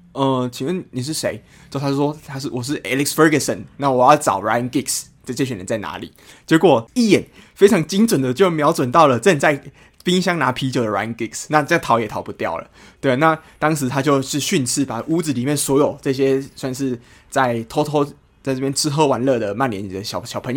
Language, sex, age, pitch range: Chinese, male, 20-39, 125-150 Hz